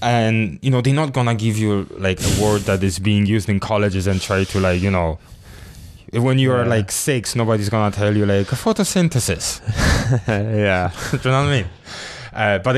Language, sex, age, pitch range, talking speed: English, male, 20-39, 100-120 Hz, 200 wpm